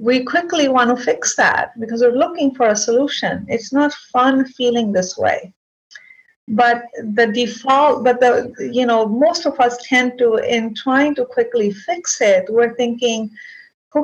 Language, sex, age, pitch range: English, female, 50-69, 215-270 Hz